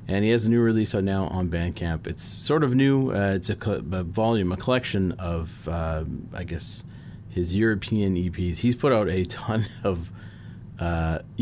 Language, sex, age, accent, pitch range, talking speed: English, male, 30-49, American, 85-110 Hz, 190 wpm